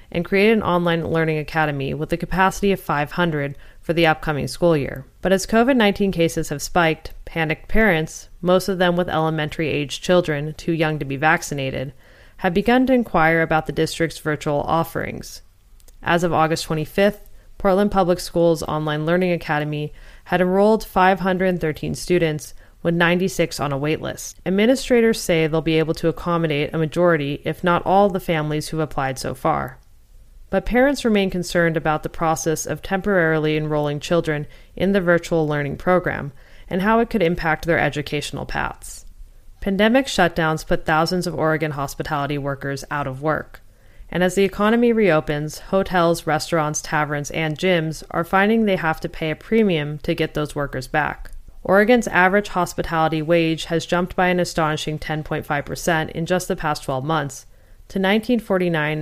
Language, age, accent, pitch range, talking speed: English, 30-49, American, 150-180 Hz, 160 wpm